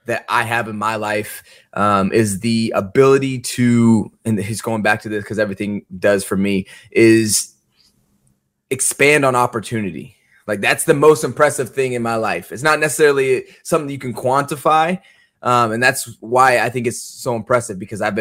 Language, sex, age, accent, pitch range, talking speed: English, male, 20-39, American, 100-115 Hz, 175 wpm